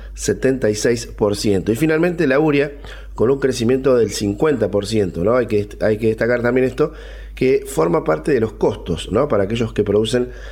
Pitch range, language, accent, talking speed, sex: 110-140 Hz, Spanish, Argentinian, 165 wpm, male